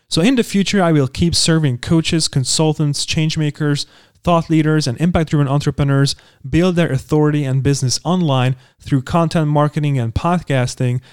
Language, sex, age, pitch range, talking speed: English, male, 30-49, 135-165 Hz, 145 wpm